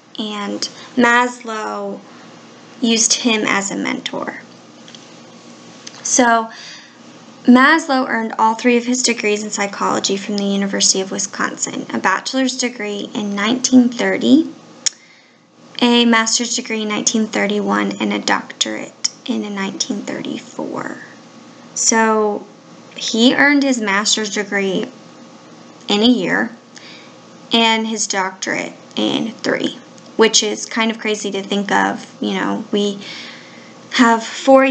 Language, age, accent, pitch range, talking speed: English, 10-29, American, 205-245 Hz, 110 wpm